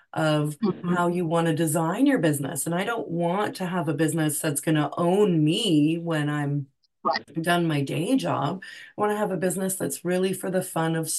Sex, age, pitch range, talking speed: female, 30-49, 155-190 Hz, 210 wpm